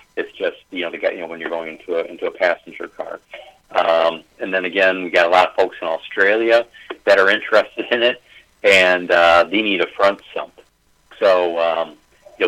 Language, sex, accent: English, male, American